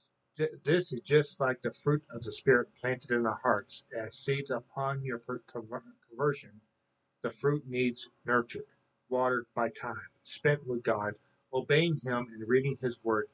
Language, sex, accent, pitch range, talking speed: English, male, American, 115-145 Hz, 155 wpm